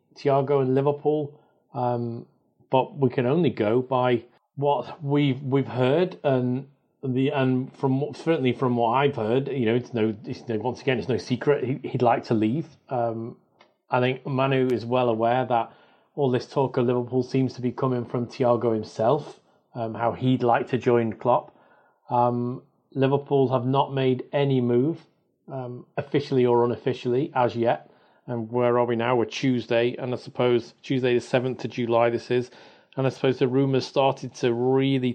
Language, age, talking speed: English, 40-59, 175 wpm